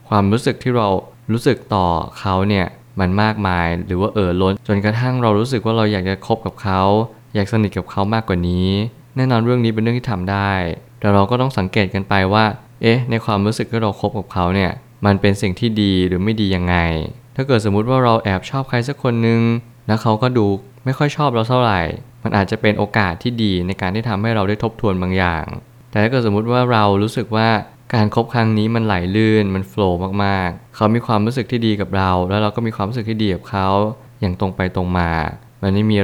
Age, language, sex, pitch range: 20-39, Thai, male, 95-115 Hz